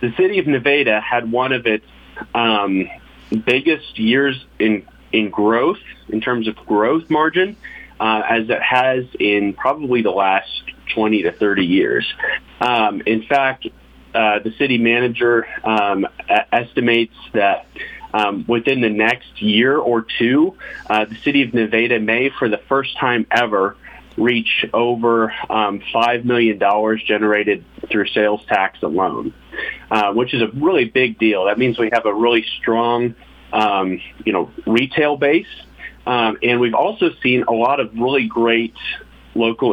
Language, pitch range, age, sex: English, 110-130 Hz, 30-49, male